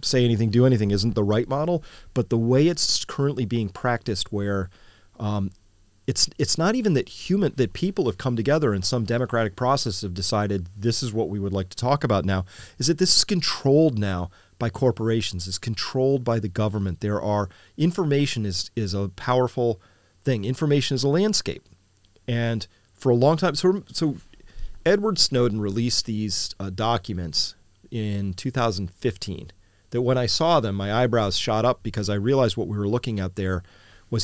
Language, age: English, 40-59